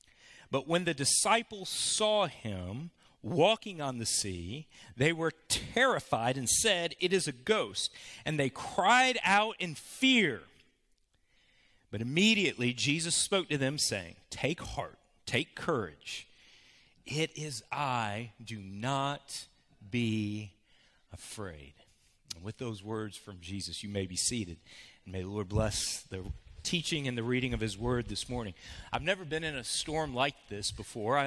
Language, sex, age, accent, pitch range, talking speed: English, male, 40-59, American, 115-165 Hz, 150 wpm